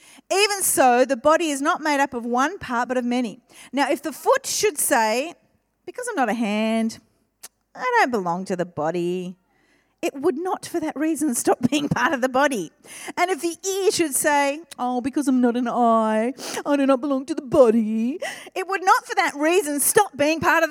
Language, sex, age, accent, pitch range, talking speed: English, female, 40-59, Australian, 245-345 Hz, 210 wpm